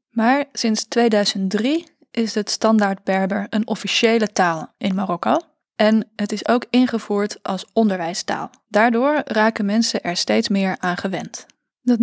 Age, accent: 20-39, Dutch